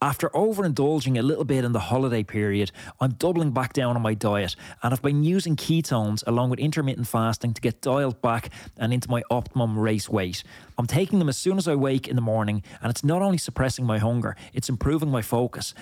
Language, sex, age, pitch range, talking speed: English, male, 20-39, 110-140 Hz, 215 wpm